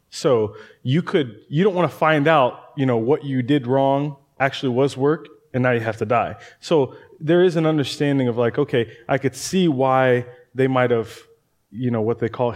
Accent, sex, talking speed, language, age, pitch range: American, male, 210 wpm, English, 20-39, 120-140 Hz